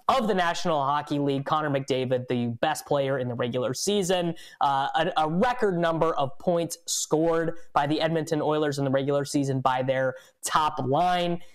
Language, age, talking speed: English, 20-39, 175 wpm